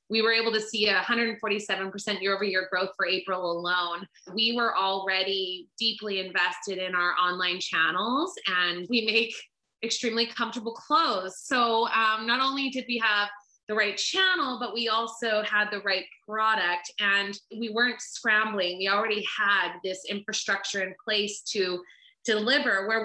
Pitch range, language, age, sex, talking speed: 195-230 Hz, English, 20-39, female, 155 wpm